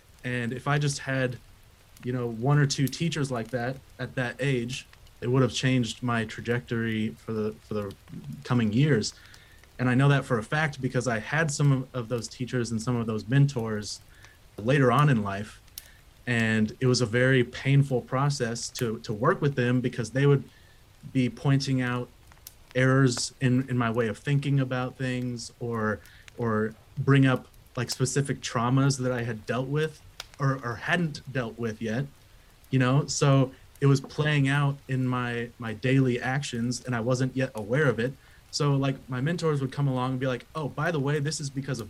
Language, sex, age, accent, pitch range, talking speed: English, male, 30-49, American, 115-135 Hz, 190 wpm